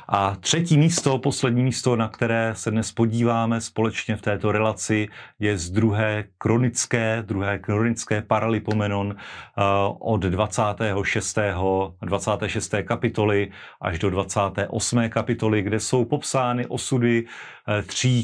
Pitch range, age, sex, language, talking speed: 110-130 Hz, 40-59, male, Slovak, 110 wpm